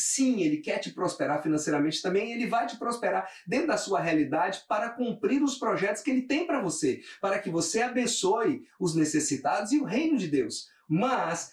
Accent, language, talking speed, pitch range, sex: Brazilian, Portuguese, 190 wpm, 155-245 Hz, male